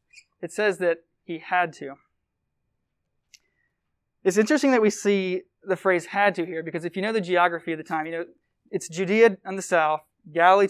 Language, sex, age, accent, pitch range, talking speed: English, male, 20-39, American, 155-190 Hz, 185 wpm